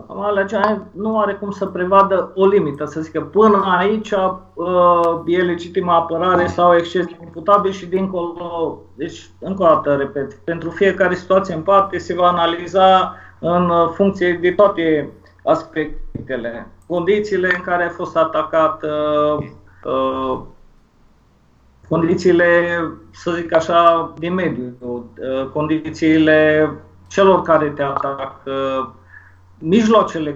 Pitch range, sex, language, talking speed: 150-180 Hz, male, Romanian, 110 wpm